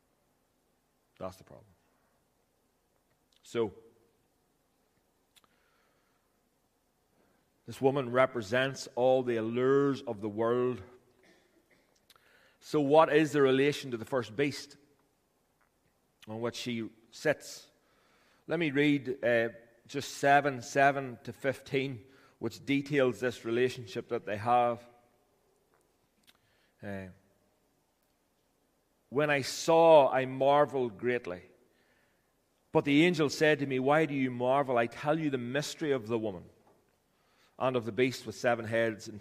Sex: male